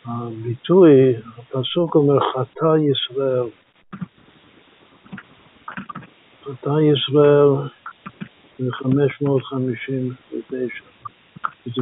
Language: Hebrew